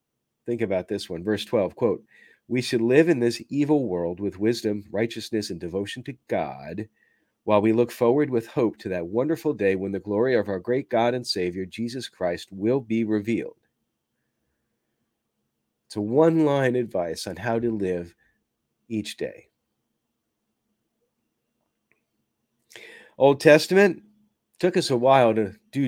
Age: 40-59